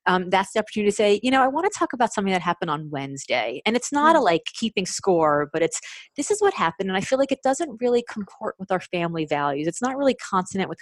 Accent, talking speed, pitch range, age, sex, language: American, 265 wpm, 170-220 Hz, 30-49, female, English